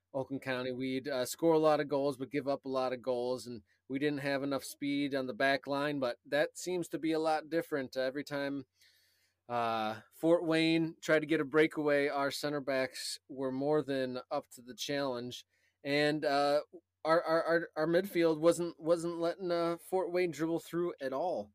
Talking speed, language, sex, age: 200 wpm, English, male, 20-39